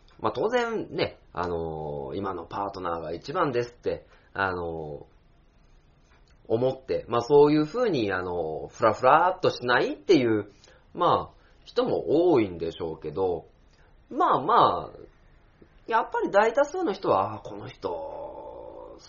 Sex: male